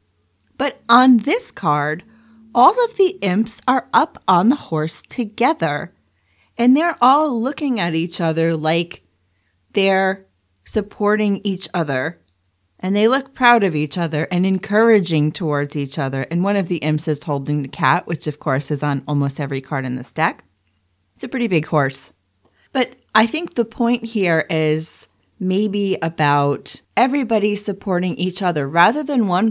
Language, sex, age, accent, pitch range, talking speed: English, female, 30-49, American, 145-215 Hz, 160 wpm